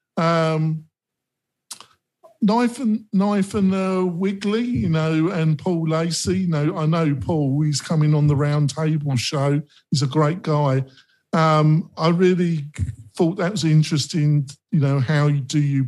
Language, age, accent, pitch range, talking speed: English, 50-69, British, 130-160 Hz, 145 wpm